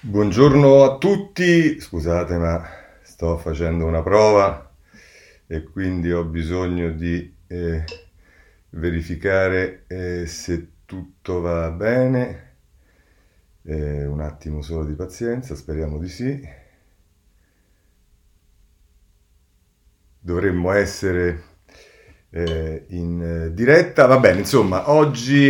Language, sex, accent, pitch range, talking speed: Italian, male, native, 85-115 Hz, 90 wpm